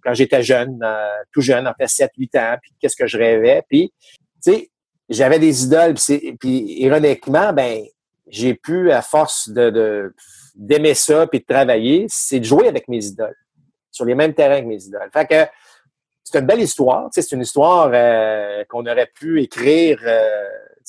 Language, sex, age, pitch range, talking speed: French, male, 50-69, 120-155 Hz, 180 wpm